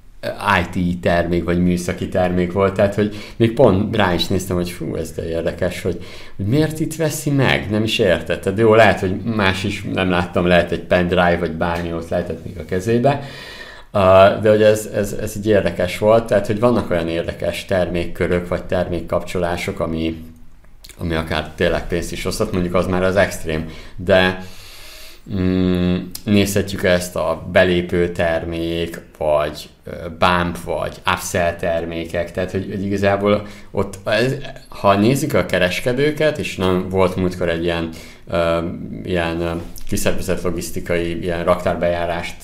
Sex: male